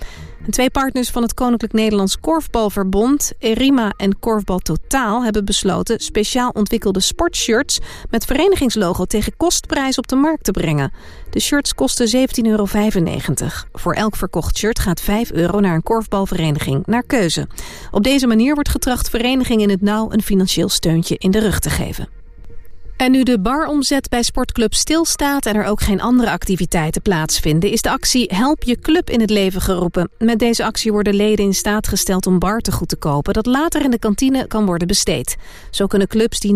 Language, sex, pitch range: Dutch, female, 190-245 Hz